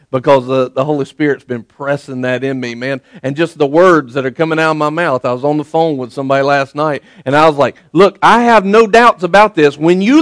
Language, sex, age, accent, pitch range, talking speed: English, male, 50-69, American, 145-190 Hz, 260 wpm